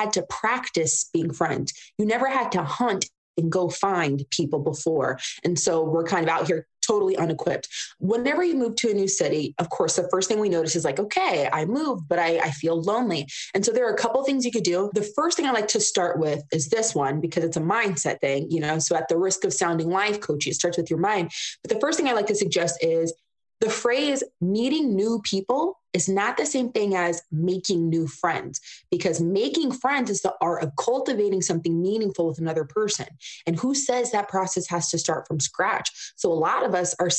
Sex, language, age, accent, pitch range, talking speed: female, English, 20-39, American, 170-230 Hz, 230 wpm